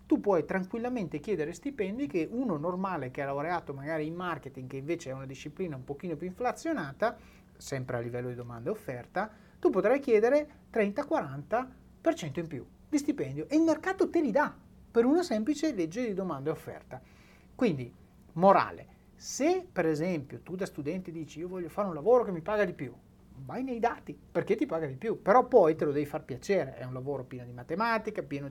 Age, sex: 30-49, male